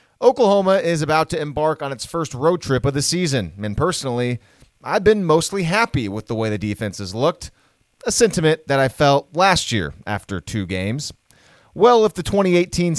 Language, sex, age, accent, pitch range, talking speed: English, male, 30-49, American, 120-170 Hz, 185 wpm